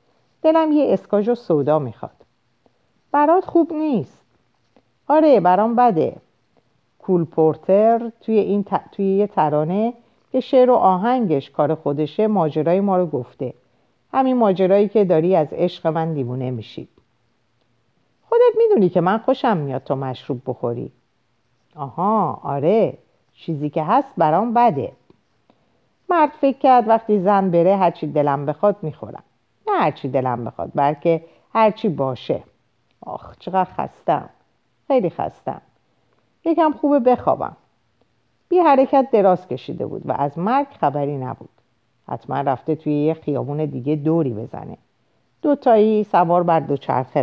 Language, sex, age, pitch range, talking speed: Persian, female, 50-69, 140-230 Hz, 130 wpm